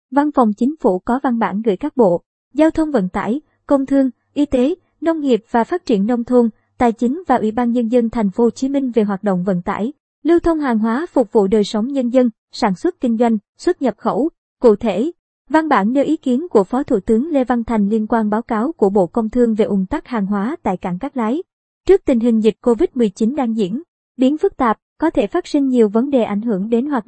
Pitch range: 215-270 Hz